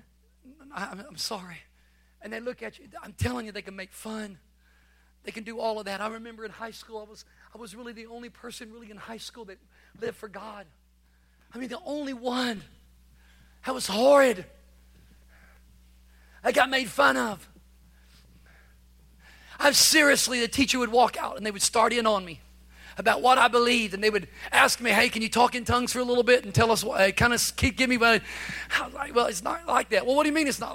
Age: 40-59